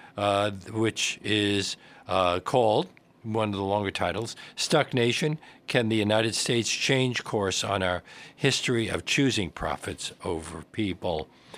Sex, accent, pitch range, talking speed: male, American, 95-130 Hz, 135 wpm